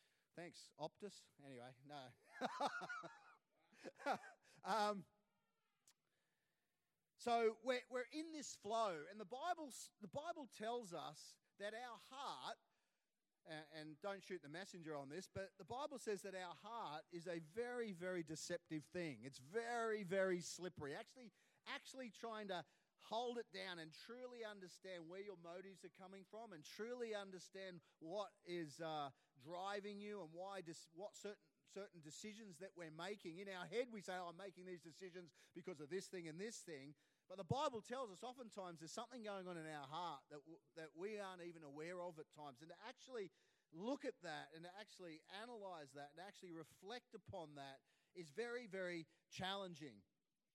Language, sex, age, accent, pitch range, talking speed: English, male, 40-59, Australian, 165-215 Hz, 165 wpm